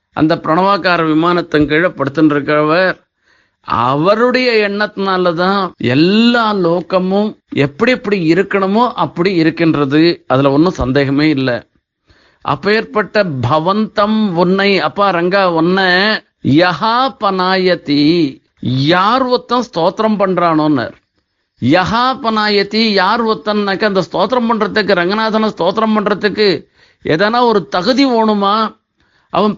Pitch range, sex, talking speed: 170-215 Hz, male, 80 wpm